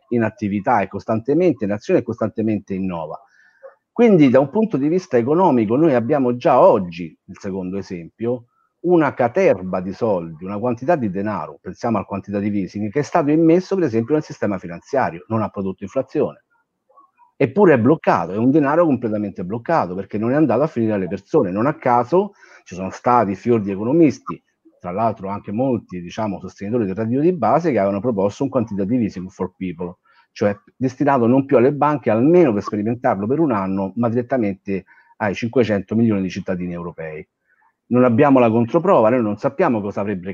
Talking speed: 180 wpm